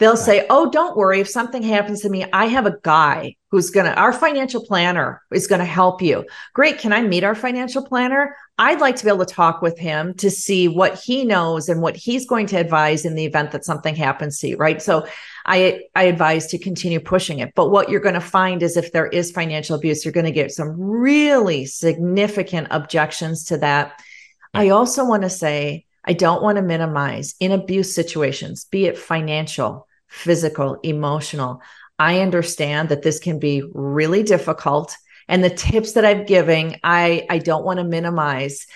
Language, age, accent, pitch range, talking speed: English, 40-59, American, 155-195 Hz, 200 wpm